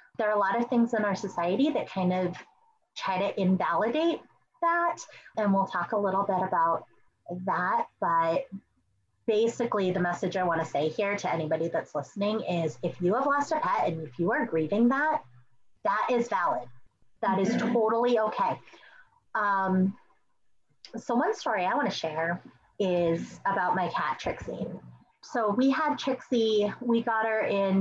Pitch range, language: 175-235 Hz, English